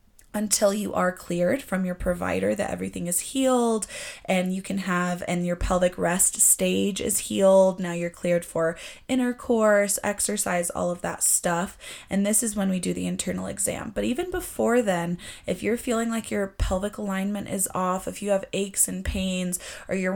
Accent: American